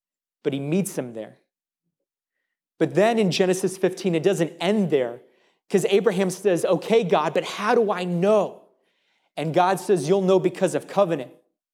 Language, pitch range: English, 160-195 Hz